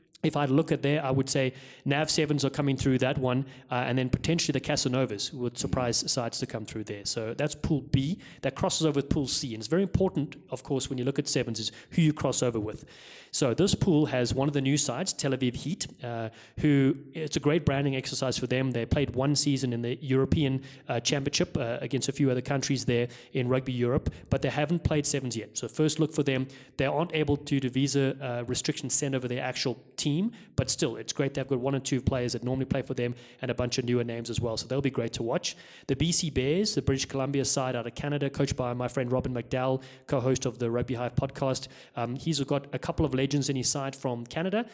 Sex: male